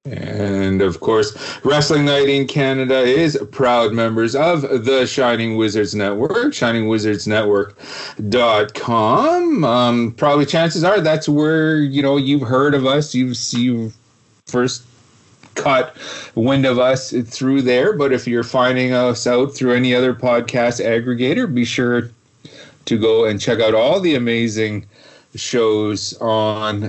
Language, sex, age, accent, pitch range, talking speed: English, male, 40-59, American, 115-140 Hz, 140 wpm